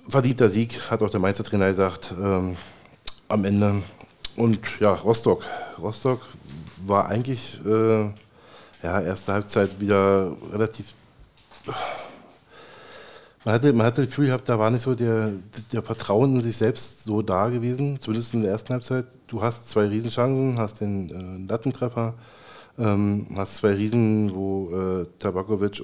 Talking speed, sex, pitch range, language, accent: 145 wpm, male, 100-120 Hz, German, German